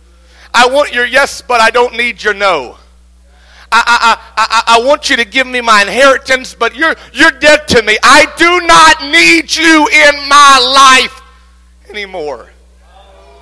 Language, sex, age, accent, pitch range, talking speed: English, male, 50-69, American, 160-235 Hz, 160 wpm